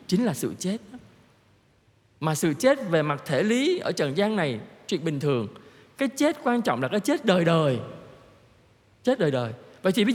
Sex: male